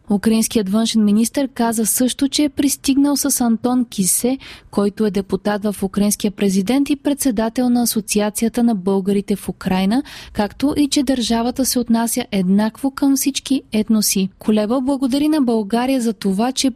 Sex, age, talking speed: female, 20-39, 155 wpm